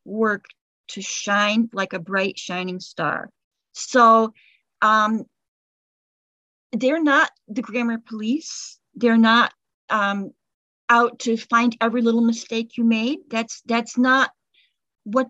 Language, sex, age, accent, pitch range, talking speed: English, female, 40-59, American, 200-250 Hz, 120 wpm